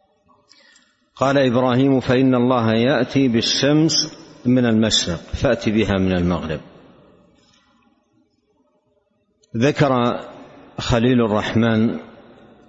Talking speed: 70 wpm